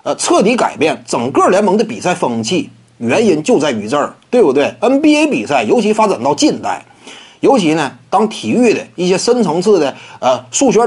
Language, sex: Chinese, male